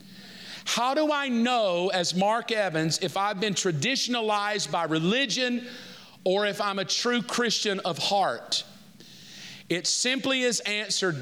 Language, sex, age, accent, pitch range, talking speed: English, male, 50-69, American, 195-265 Hz, 135 wpm